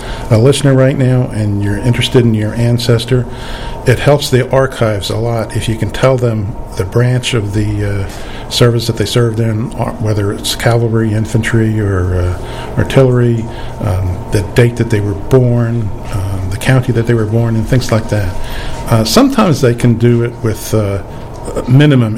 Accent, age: American, 50-69